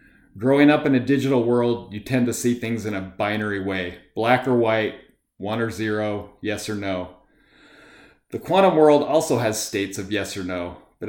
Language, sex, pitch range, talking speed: English, male, 105-125 Hz, 190 wpm